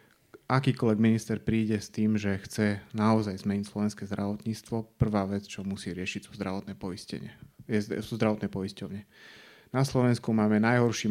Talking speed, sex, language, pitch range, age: 140 wpm, male, Slovak, 95-110 Hz, 30-49